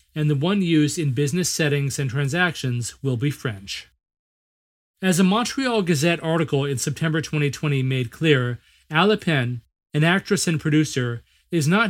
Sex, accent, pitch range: male, American, 135-170 Hz